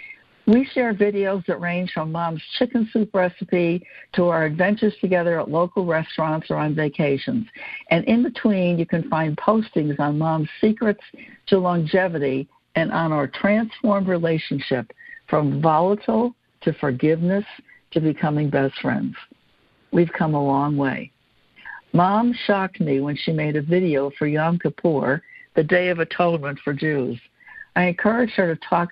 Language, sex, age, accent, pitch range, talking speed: English, female, 60-79, American, 155-200 Hz, 150 wpm